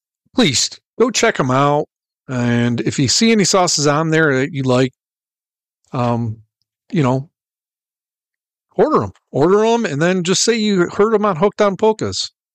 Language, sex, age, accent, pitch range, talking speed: English, male, 50-69, American, 125-160 Hz, 165 wpm